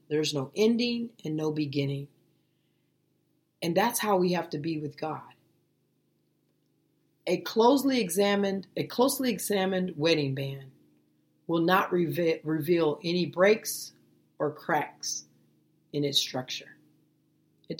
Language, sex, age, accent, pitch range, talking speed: English, female, 40-59, American, 140-175 Hz, 115 wpm